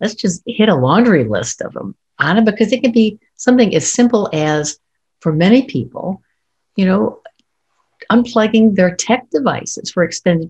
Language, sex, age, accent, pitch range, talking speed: English, female, 60-79, American, 180-235 Hz, 165 wpm